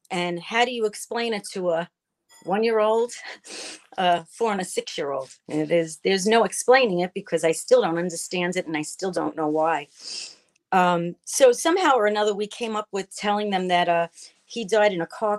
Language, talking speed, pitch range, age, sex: English, 200 wpm, 175-220 Hz, 40-59, female